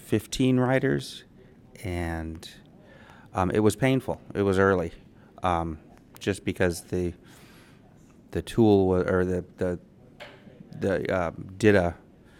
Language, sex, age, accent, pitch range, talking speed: English, male, 30-49, American, 85-105 Hz, 105 wpm